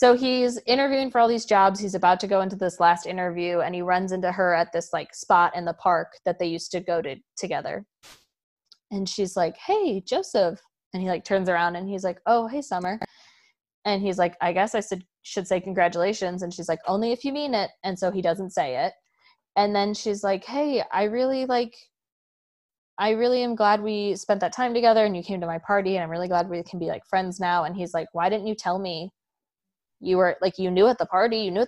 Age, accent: 20-39, American